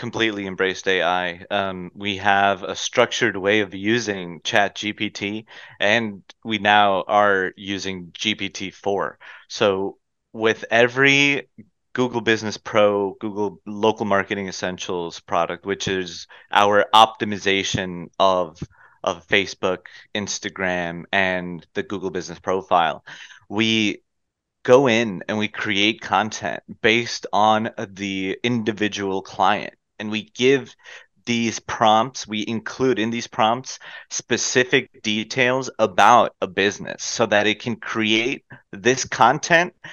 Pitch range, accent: 100-120 Hz, American